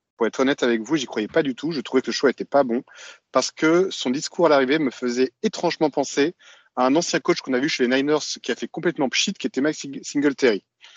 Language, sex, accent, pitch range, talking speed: French, male, French, 125-160 Hz, 255 wpm